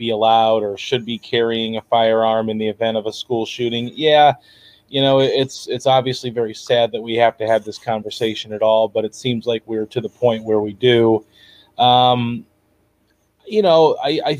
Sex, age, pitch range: male, 30-49, 115-130 Hz